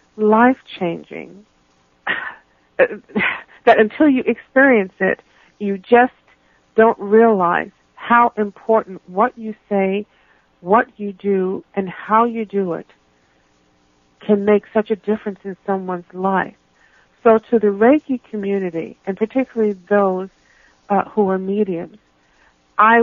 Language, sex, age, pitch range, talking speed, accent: English, female, 50-69, 170-220 Hz, 115 wpm, American